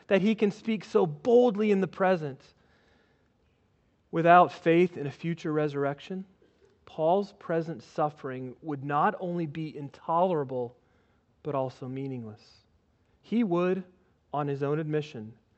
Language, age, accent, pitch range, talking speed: English, 40-59, American, 125-175 Hz, 125 wpm